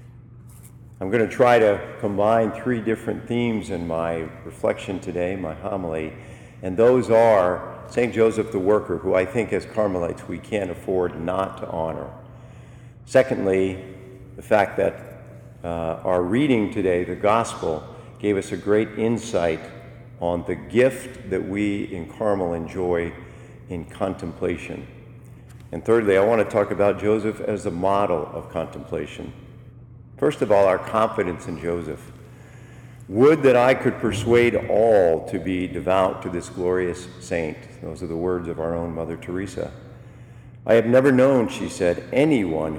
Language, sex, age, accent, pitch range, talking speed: English, male, 50-69, American, 90-120 Hz, 145 wpm